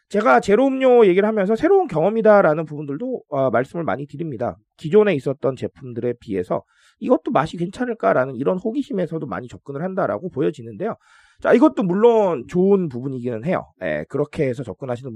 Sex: male